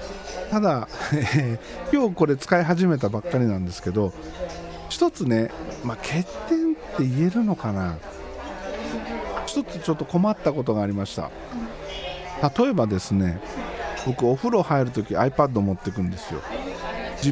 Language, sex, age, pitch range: Japanese, male, 50-69, 105-175 Hz